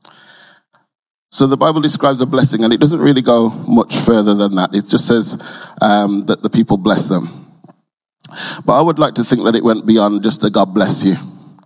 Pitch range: 105-135 Hz